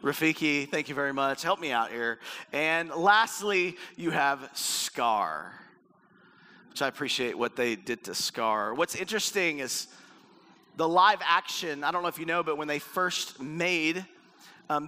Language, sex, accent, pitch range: English, male, American, 155-200 Hz